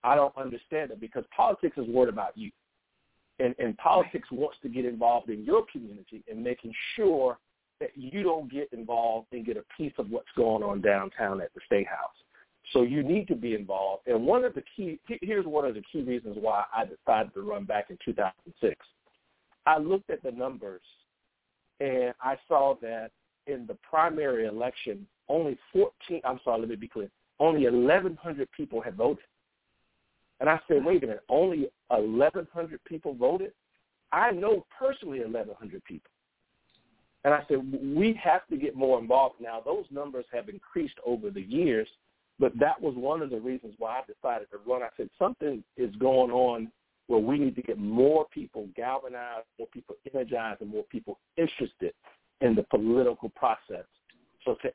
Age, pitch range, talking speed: 50-69, 120-185 Hz, 180 wpm